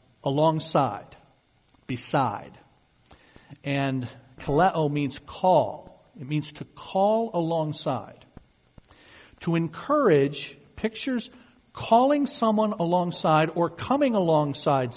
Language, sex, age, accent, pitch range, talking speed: English, male, 50-69, American, 135-185 Hz, 80 wpm